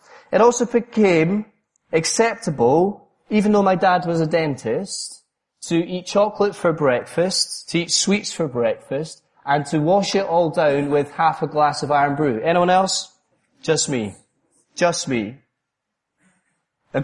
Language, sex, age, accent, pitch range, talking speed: English, male, 30-49, British, 150-190 Hz, 145 wpm